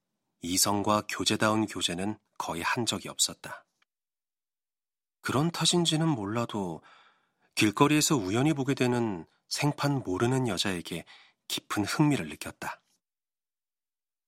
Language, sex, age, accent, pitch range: Korean, male, 40-59, native, 105-145 Hz